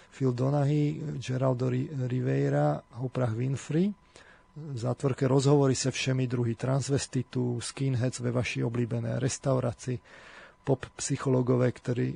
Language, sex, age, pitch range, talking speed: Slovak, male, 40-59, 125-135 Hz, 100 wpm